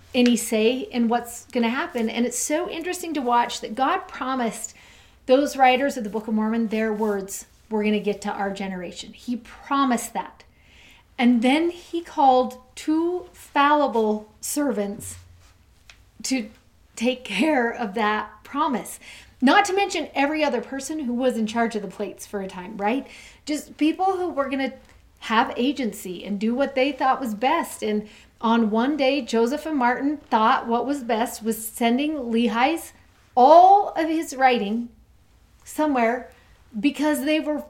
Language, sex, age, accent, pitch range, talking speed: English, female, 40-59, American, 220-280 Hz, 160 wpm